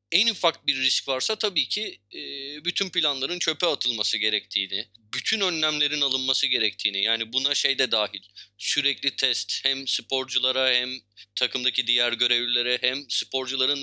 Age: 30-49